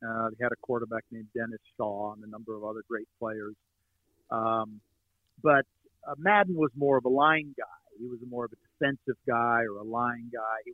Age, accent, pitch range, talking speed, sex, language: 50-69, American, 110-135 Hz, 205 wpm, male, English